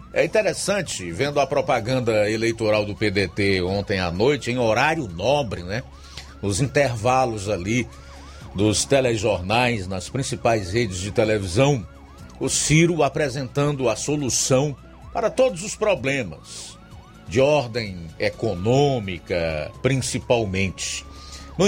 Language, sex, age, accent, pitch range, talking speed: Portuguese, male, 50-69, Brazilian, 95-155 Hz, 110 wpm